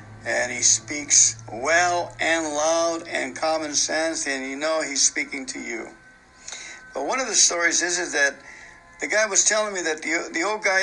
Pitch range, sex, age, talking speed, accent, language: 140-165 Hz, male, 60-79, 190 wpm, American, English